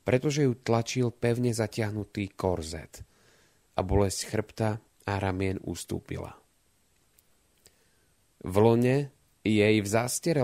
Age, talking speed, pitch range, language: 30-49, 100 wpm, 95-125 Hz, Slovak